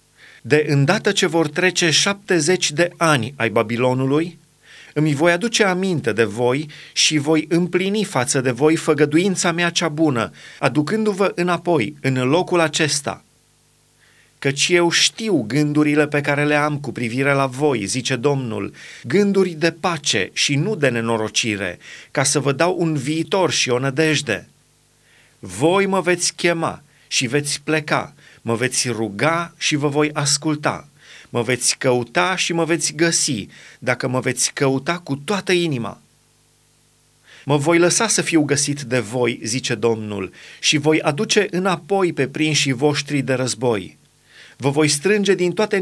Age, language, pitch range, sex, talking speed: 30-49, Romanian, 130-170 Hz, male, 150 wpm